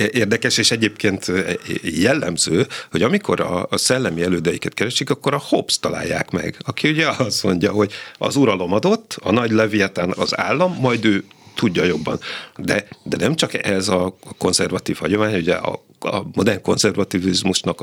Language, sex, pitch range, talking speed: Hungarian, male, 90-110 Hz, 150 wpm